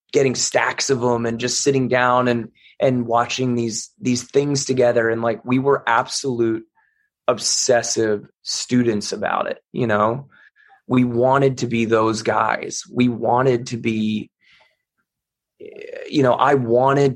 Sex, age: male, 20-39